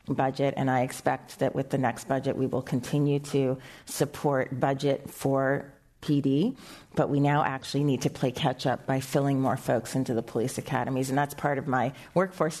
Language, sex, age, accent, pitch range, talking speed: English, female, 30-49, American, 135-155 Hz, 190 wpm